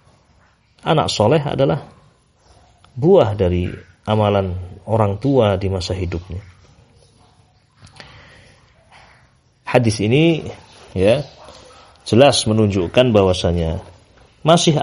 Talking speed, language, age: 75 wpm, Indonesian, 30-49